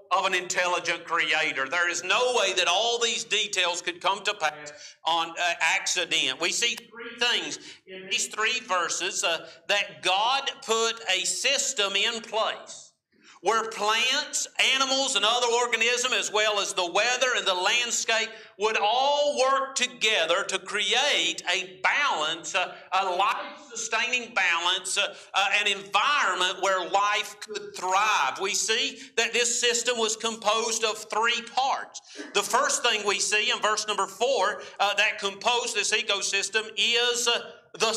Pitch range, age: 195-235 Hz, 50-69